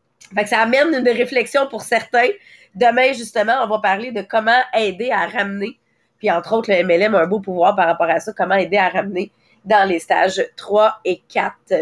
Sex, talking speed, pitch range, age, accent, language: female, 215 wpm, 200-260 Hz, 30-49, Canadian, English